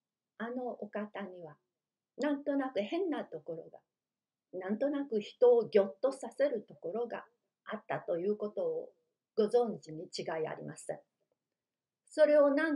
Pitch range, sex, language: 205-280 Hz, female, Japanese